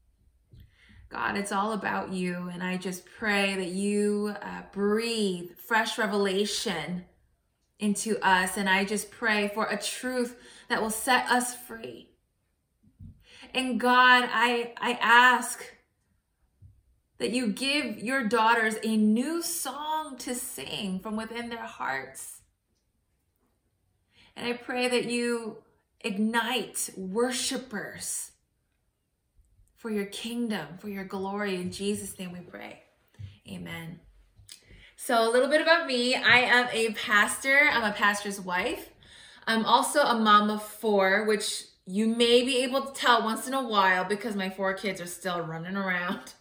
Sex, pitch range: female, 185-235 Hz